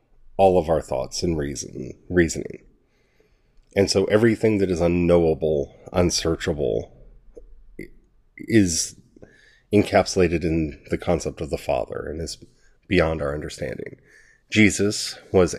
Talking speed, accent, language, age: 110 wpm, American, English, 30-49